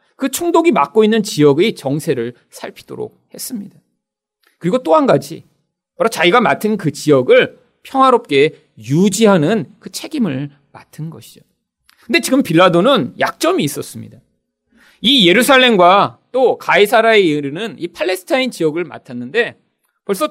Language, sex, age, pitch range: Korean, male, 40-59, 170-275 Hz